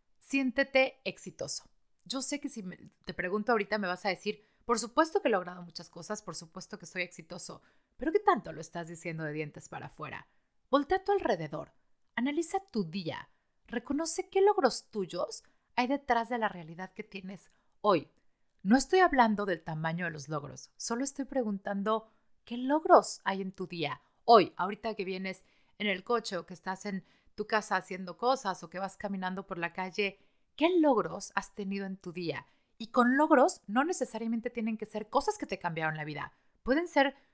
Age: 30-49